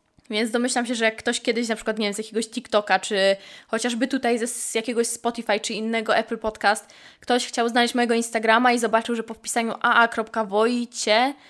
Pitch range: 215-245 Hz